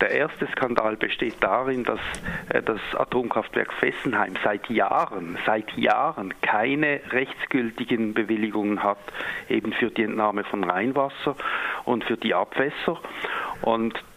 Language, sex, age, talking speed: German, male, 50-69, 120 wpm